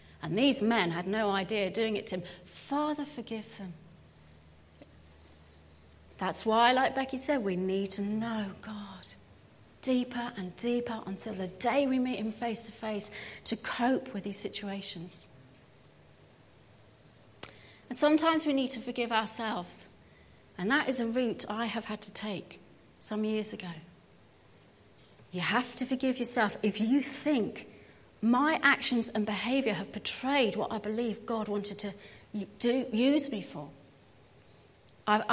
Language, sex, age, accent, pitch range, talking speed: English, female, 30-49, British, 175-240 Hz, 145 wpm